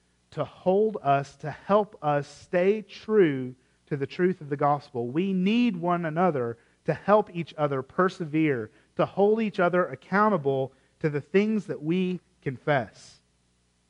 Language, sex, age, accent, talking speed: English, male, 40-59, American, 145 wpm